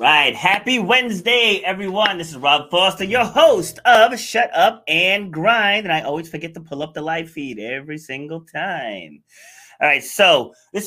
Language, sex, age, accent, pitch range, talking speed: English, male, 30-49, American, 140-195 Hz, 175 wpm